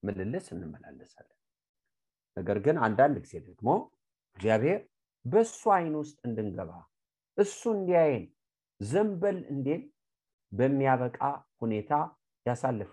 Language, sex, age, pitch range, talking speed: English, male, 50-69, 105-150 Hz, 75 wpm